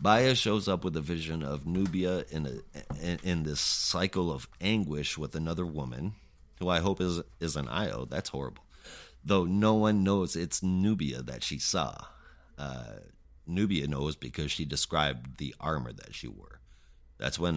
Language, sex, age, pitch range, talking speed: English, male, 30-49, 75-95 Hz, 170 wpm